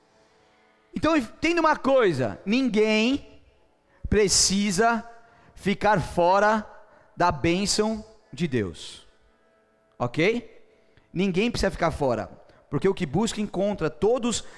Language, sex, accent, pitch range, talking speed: Portuguese, male, Brazilian, 155-250 Hz, 95 wpm